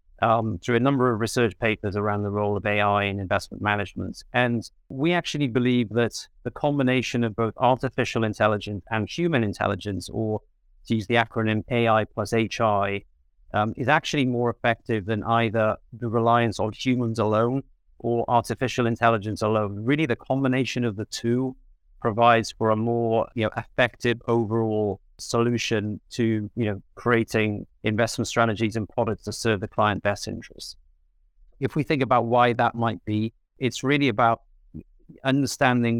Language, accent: English, British